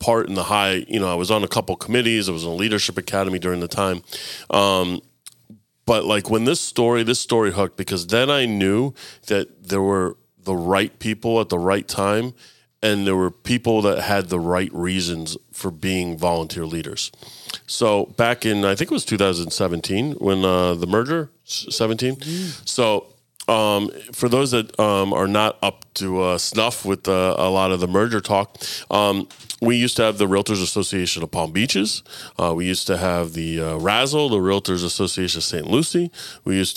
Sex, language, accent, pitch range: male, English, American, 90-115 Hz